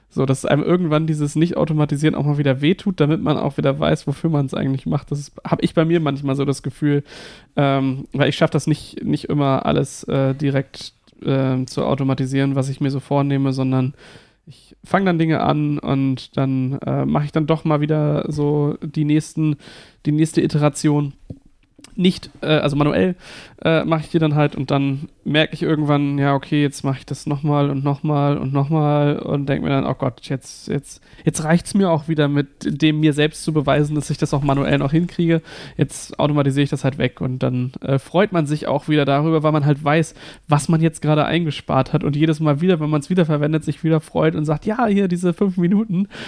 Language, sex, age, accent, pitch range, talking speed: German, male, 20-39, German, 140-160 Hz, 215 wpm